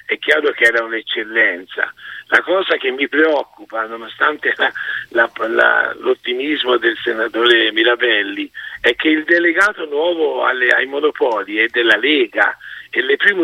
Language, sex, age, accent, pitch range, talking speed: Italian, male, 50-69, native, 295-450 Hz, 145 wpm